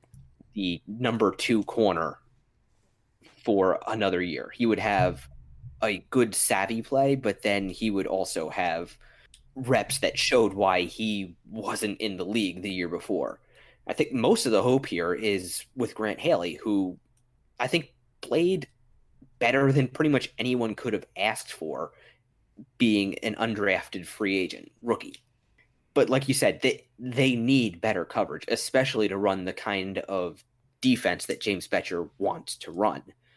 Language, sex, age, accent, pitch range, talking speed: English, male, 20-39, American, 95-125 Hz, 150 wpm